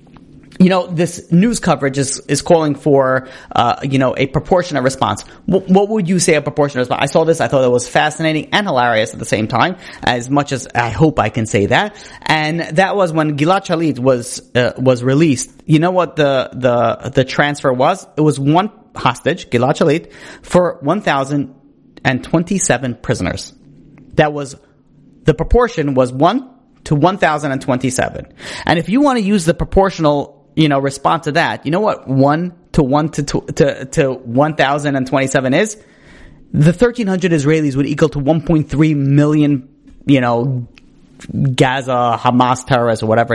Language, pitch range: English, 135-165 Hz